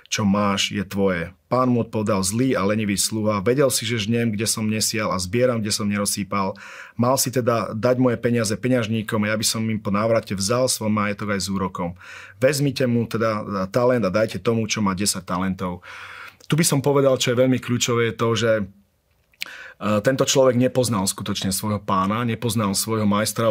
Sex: male